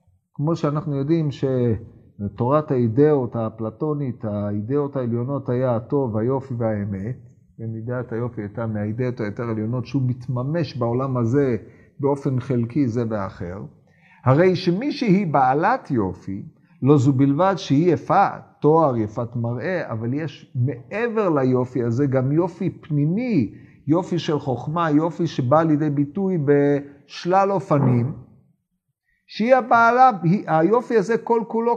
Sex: male